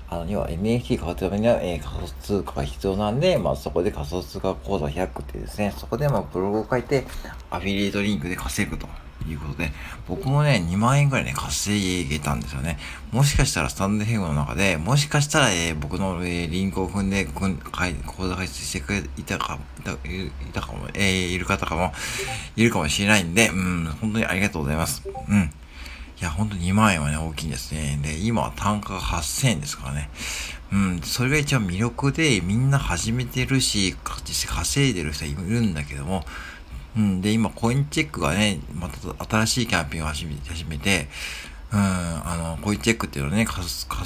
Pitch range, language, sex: 75-105 Hz, Japanese, male